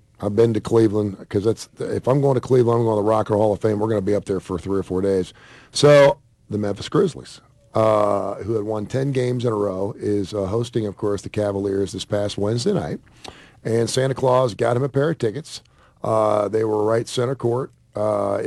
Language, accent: English, American